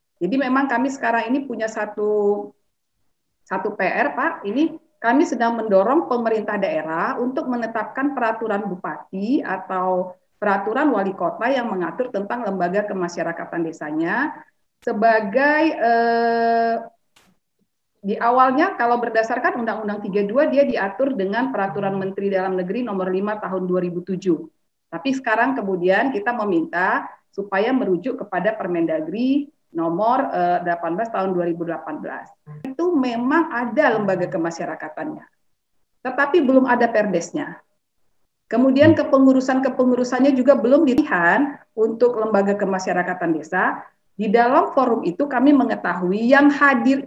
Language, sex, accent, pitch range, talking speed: Indonesian, female, native, 195-265 Hz, 110 wpm